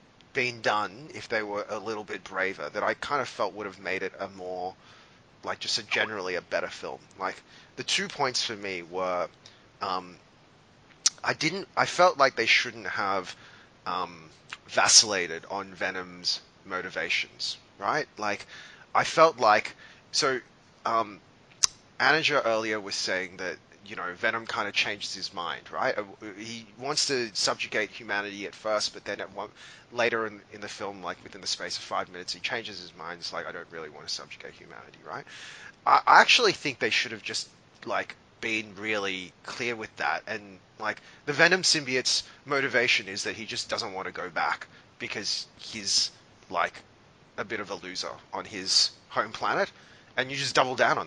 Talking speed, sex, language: 175 wpm, male, English